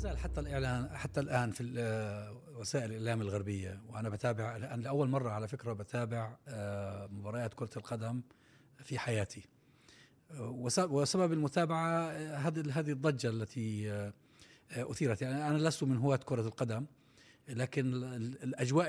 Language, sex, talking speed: Arabic, male, 115 wpm